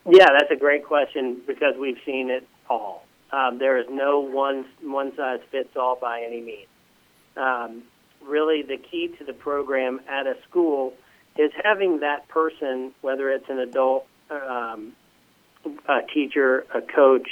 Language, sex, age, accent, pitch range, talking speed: English, male, 40-59, American, 130-150 Hz, 145 wpm